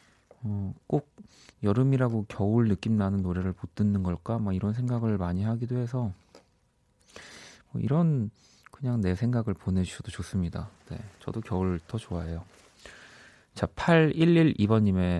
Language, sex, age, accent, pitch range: Korean, male, 30-49, native, 95-125 Hz